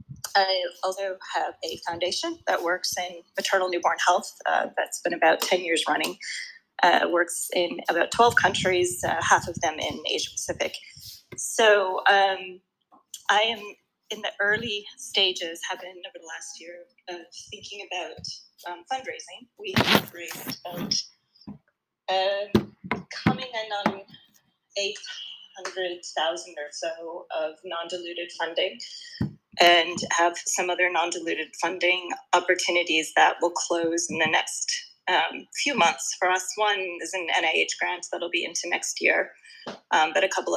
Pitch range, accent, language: 175-225 Hz, American, English